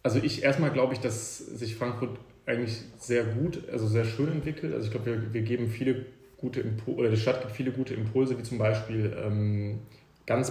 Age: 30-49